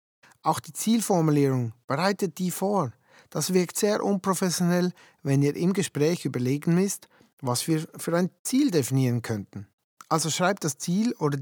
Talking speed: 145 wpm